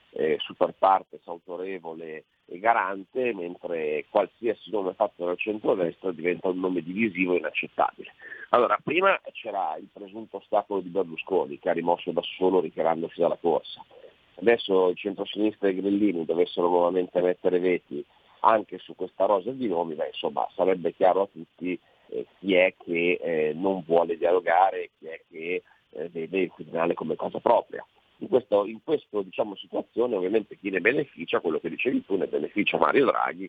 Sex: male